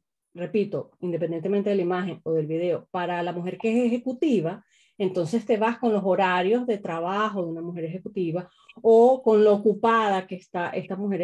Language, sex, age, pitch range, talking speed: Spanish, female, 30-49, 180-230 Hz, 180 wpm